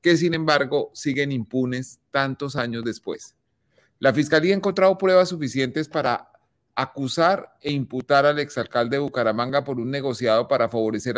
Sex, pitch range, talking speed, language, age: male, 120-150 Hz, 145 wpm, Spanish, 40-59